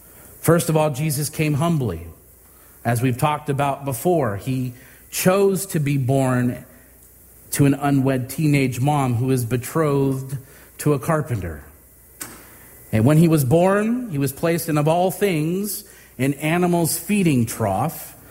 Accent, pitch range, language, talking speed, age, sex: American, 125-170 Hz, English, 140 wpm, 40-59, male